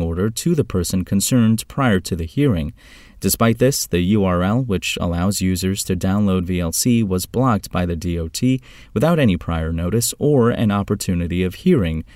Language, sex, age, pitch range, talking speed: English, male, 30-49, 90-120 Hz, 165 wpm